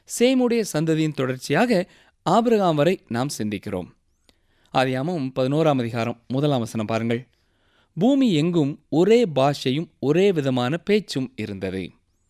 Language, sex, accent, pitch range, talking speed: Tamil, male, native, 120-175 Hz, 100 wpm